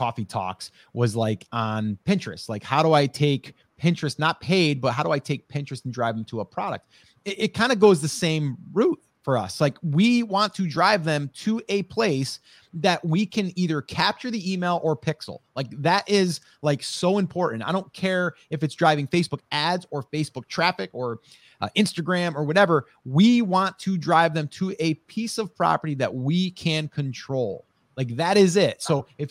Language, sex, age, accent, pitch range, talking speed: English, male, 30-49, American, 150-195 Hz, 195 wpm